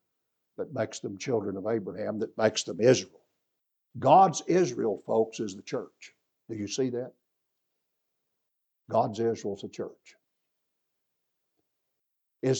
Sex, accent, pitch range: male, American, 110-145 Hz